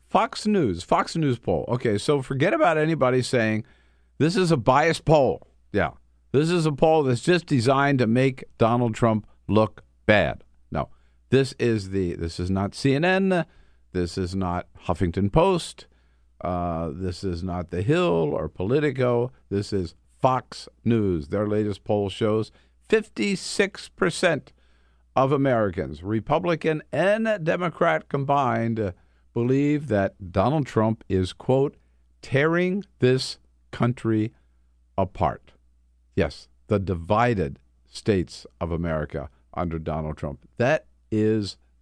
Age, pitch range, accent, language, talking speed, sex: 50-69, 80-125 Hz, American, English, 125 wpm, male